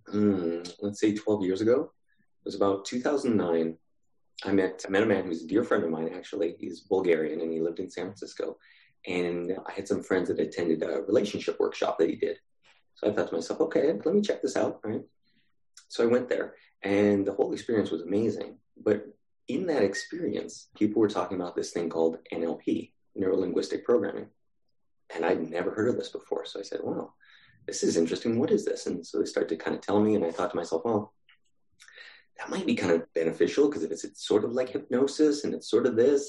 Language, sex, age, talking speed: English, male, 30-49, 215 wpm